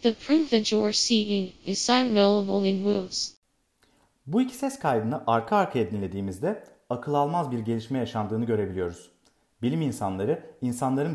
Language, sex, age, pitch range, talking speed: Turkish, male, 40-59, 105-150 Hz, 135 wpm